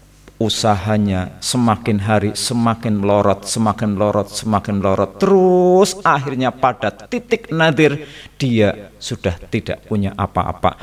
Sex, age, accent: male, 50-69, native